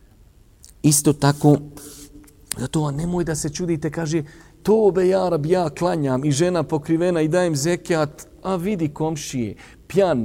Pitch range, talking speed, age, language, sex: 105-160 Hz, 140 wpm, 40-59, English, male